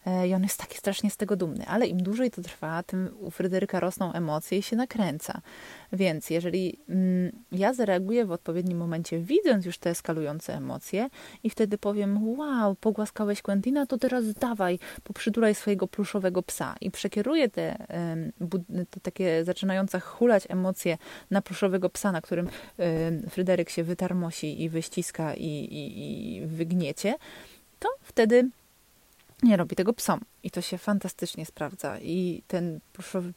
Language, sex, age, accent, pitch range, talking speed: Polish, female, 20-39, native, 175-220 Hz, 145 wpm